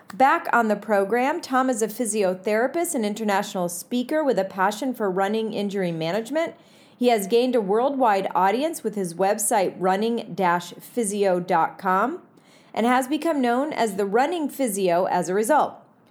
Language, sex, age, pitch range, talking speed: English, female, 30-49, 200-275 Hz, 145 wpm